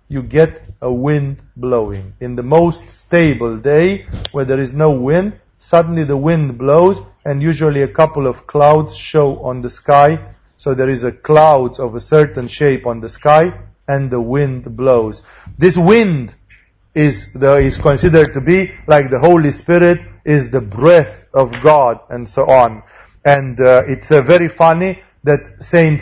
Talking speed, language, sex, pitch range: 165 wpm, English, male, 125-155 Hz